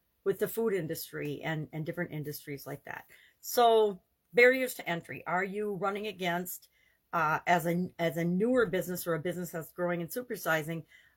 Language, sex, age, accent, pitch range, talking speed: English, female, 50-69, American, 170-215 Hz, 165 wpm